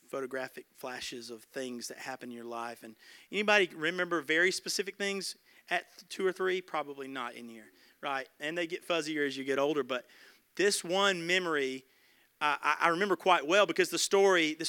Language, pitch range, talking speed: English, 135-175 Hz, 180 wpm